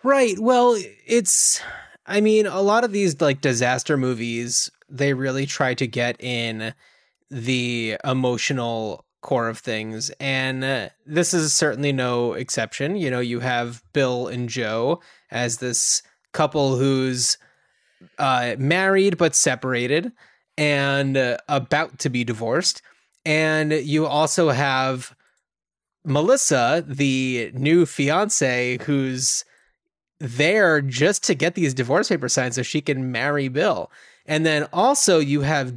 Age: 20-39